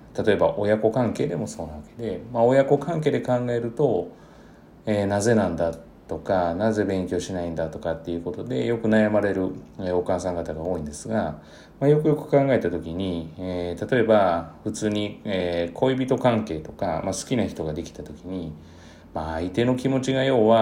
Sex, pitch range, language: male, 85-120 Hz, Japanese